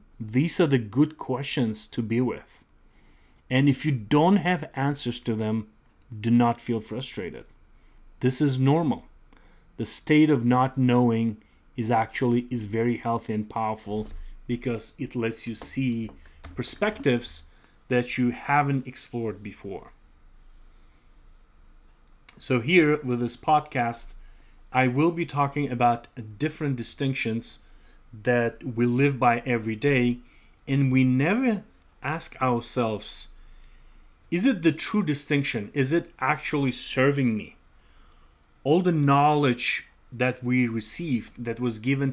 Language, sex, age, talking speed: English, male, 30-49, 125 wpm